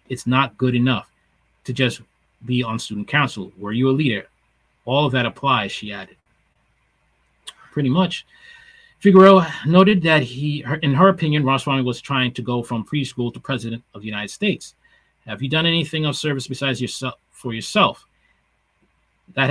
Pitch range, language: 120-155 Hz, English